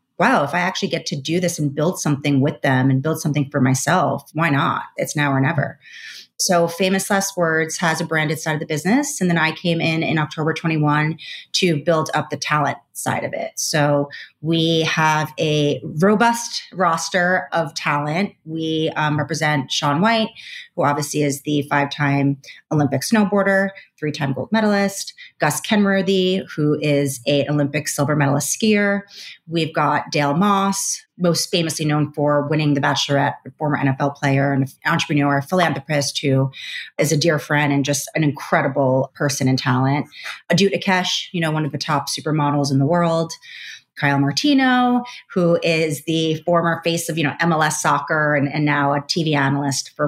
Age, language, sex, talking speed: 30-49, English, female, 175 wpm